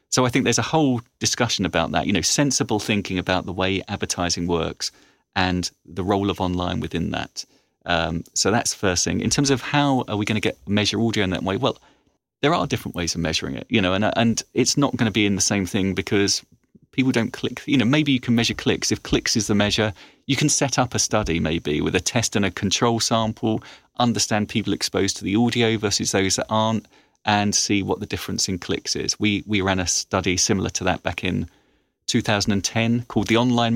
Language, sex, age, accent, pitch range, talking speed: Finnish, male, 30-49, British, 95-115 Hz, 230 wpm